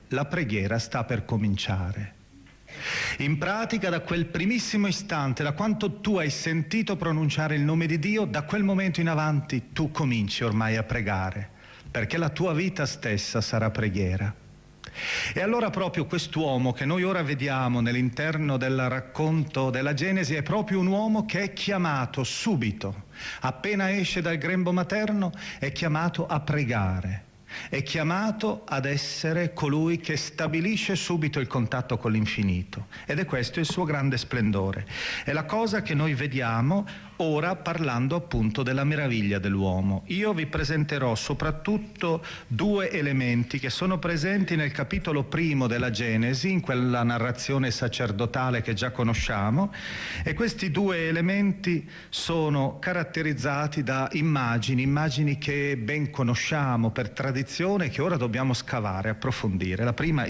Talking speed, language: 140 wpm, Italian